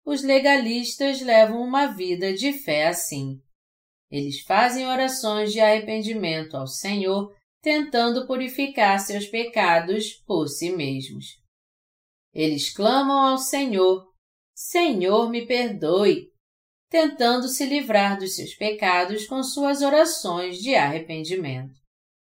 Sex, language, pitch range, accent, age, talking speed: female, Portuguese, 170-265 Hz, Brazilian, 40-59, 110 wpm